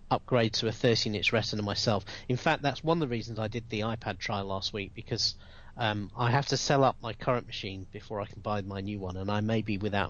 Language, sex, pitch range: English, male, 105-140 Hz